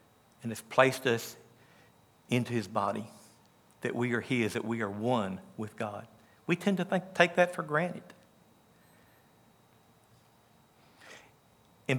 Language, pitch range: English, 120-150 Hz